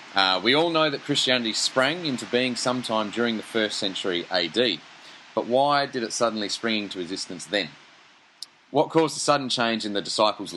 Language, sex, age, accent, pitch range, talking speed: English, male, 30-49, Australian, 95-125 Hz, 180 wpm